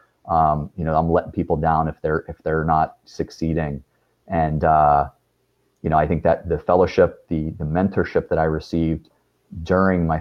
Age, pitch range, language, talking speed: 30-49, 75-85 Hz, English, 175 wpm